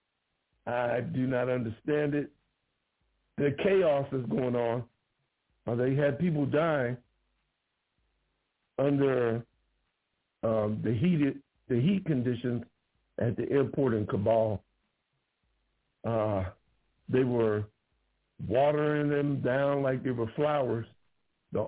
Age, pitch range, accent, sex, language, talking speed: 60-79, 115-140 Hz, American, male, English, 100 wpm